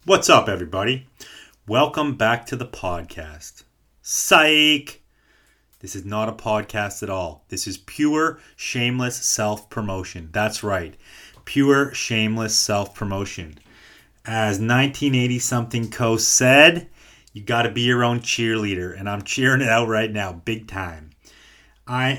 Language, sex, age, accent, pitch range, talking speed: English, male, 30-49, American, 100-120 Hz, 130 wpm